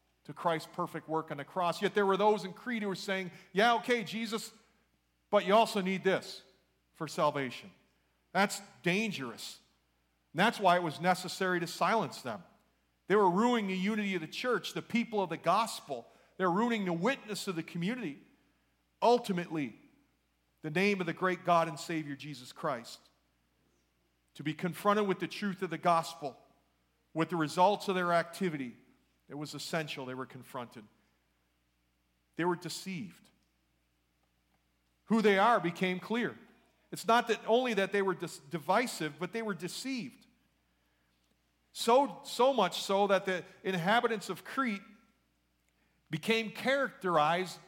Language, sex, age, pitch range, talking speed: English, male, 40-59, 140-205 Hz, 150 wpm